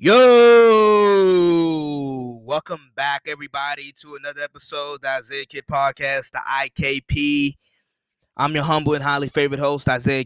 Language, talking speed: English, 130 wpm